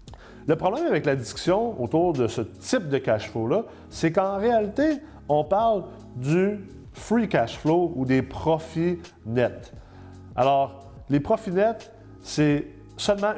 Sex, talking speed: male, 140 wpm